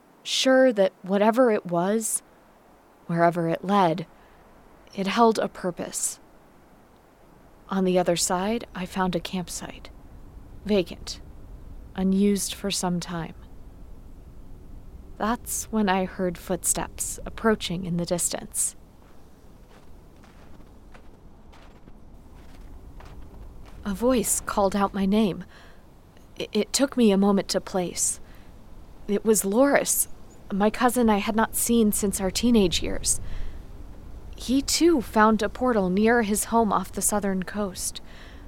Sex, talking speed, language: female, 115 wpm, English